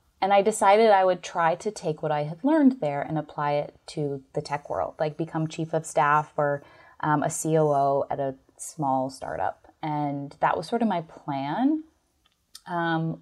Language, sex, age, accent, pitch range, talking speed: English, female, 20-39, American, 155-195 Hz, 185 wpm